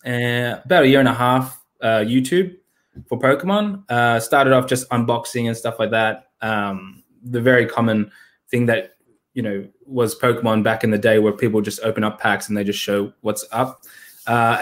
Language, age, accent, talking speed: English, 20-39, Australian, 195 wpm